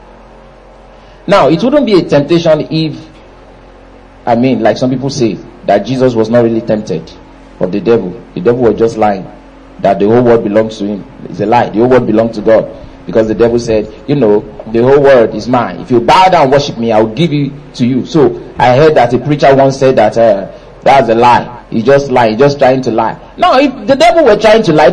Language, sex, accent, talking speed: English, male, Nigerian, 230 wpm